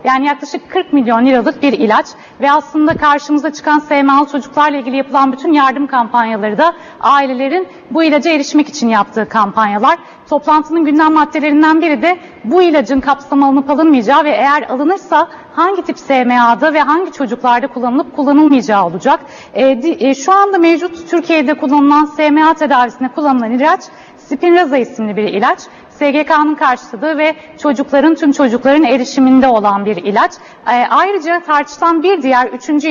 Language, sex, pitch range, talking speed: Turkish, female, 260-315 Hz, 145 wpm